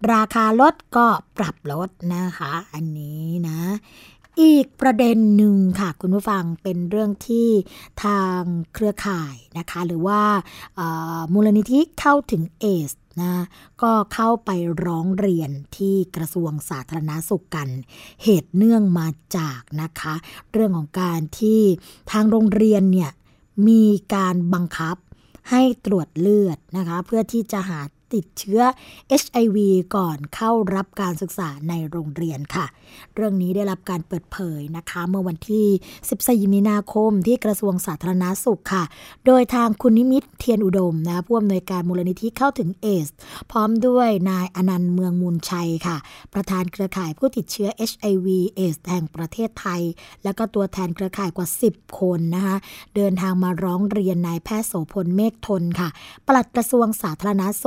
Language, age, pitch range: Thai, 20-39, 175-215 Hz